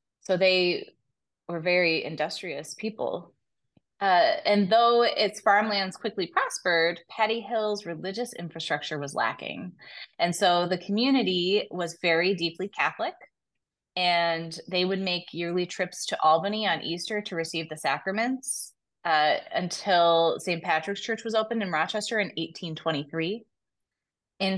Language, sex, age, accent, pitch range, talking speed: English, female, 20-39, American, 165-205 Hz, 130 wpm